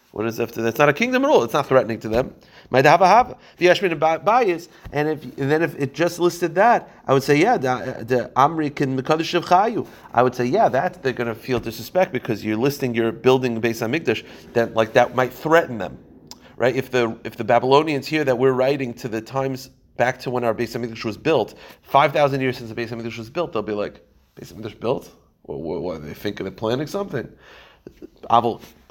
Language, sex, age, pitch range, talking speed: English, male, 30-49, 120-170 Hz, 210 wpm